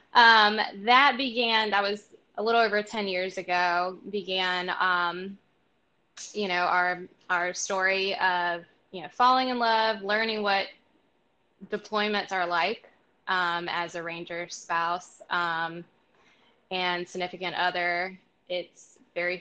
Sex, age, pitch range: female, 10-29, 175-215 Hz